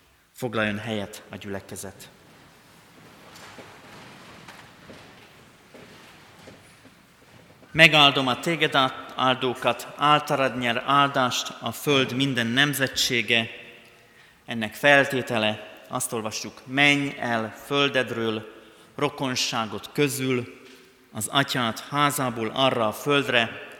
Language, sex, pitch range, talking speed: Hungarian, male, 115-140 Hz, 75 wpm